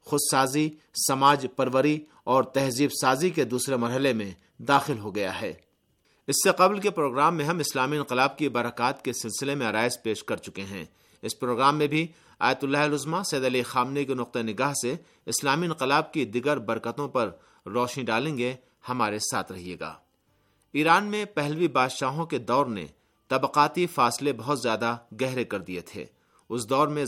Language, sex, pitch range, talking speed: Urdu, male, 120-150 Hz, 175 wpm